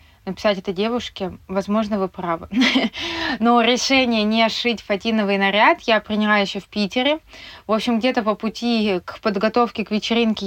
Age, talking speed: 20-39, 150 wpm